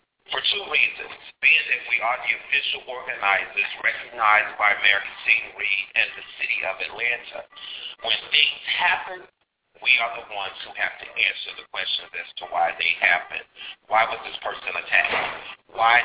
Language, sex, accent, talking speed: English, male, American, 160 wpm